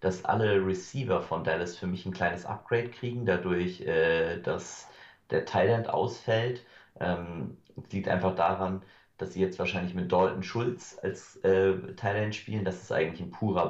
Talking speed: 155 wpm